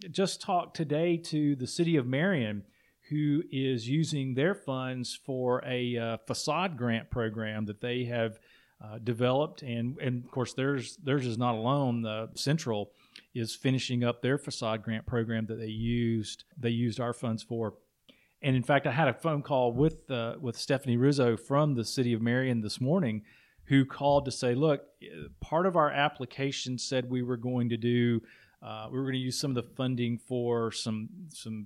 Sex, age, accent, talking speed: male, 40-59, American, 190 wpm